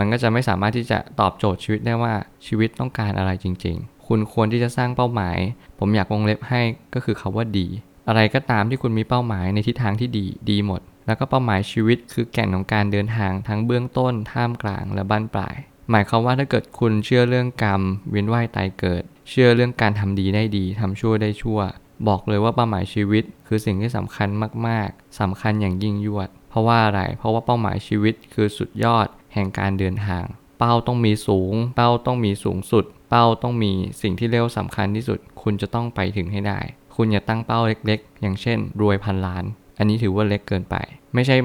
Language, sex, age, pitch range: Thai, male, 20-39, 100-115 Hz